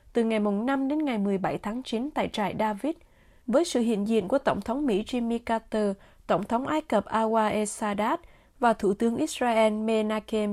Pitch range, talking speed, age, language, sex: 210-275 Hz, 190 wpm, 20-39, Vietnamese, female